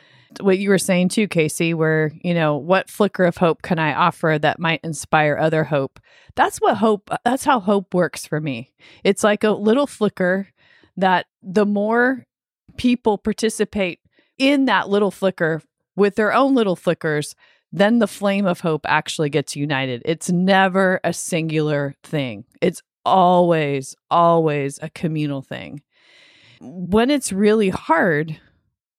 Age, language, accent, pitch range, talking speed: 30-49, English, American, 155-210 Hz, 150 wpm